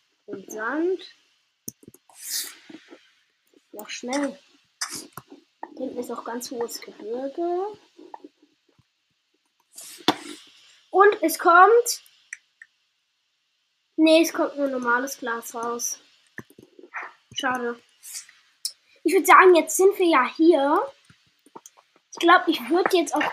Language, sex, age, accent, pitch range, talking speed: German, female, 20-39, German, 275-350 Hz, 90 wpm